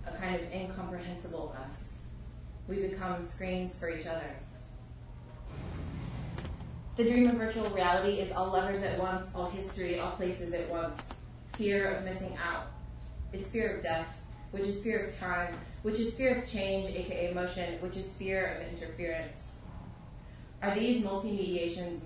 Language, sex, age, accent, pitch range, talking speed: English, female, 20-39, American, 155-190 Hz, 150 wpm